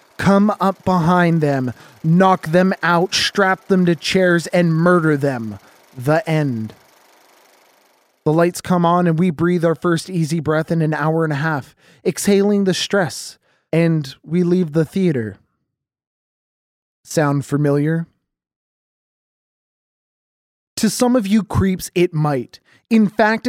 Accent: American